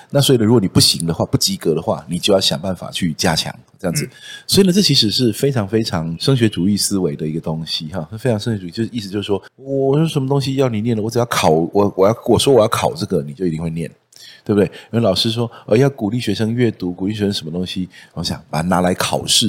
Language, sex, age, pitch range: Chinese, male, 30-49, 90-125 Hz